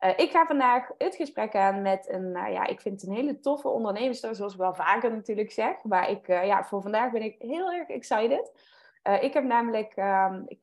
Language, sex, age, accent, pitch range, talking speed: Dutch, female, 20-39, Dutch, 195-265 Hz, 235 wpm